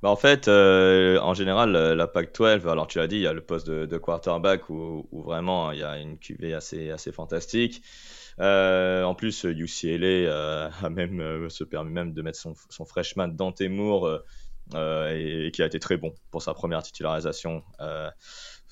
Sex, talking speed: male, 195 wpm